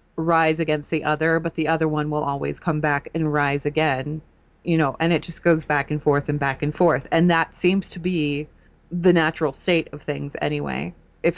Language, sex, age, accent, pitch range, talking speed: English, female, 30-49, American, 155-185 Hz, 210 wpm